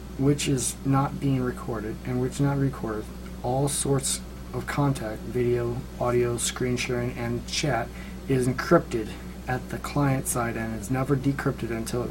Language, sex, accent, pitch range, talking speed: English, male, American, 115-140 Hz, 155 wpm